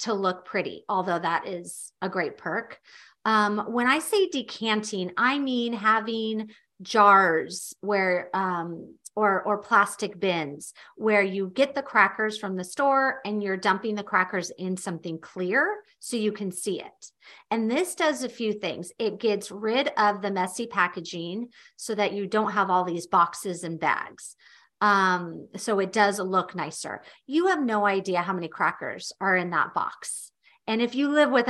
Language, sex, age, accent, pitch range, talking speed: English, female, 40-59, American, 185-225 Hz, 170 wpm